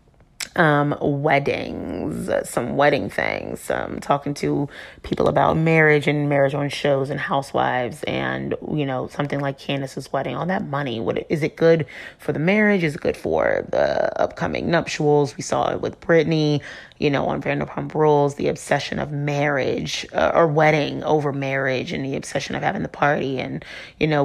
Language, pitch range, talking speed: English, 140-170 Hz, 175 wpm